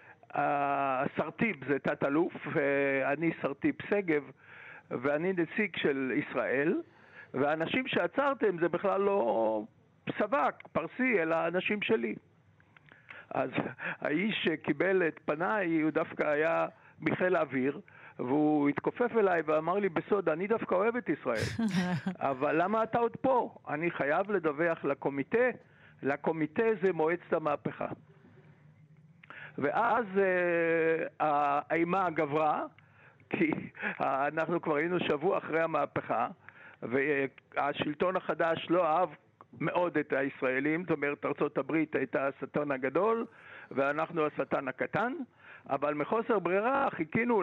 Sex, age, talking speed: male, 60-79, 110 wpm